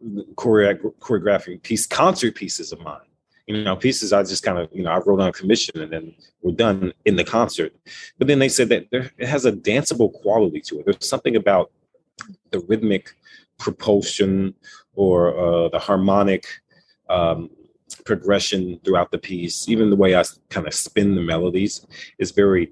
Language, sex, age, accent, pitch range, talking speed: English, male, 30-49, American, 90-120 Hz, 175 wpm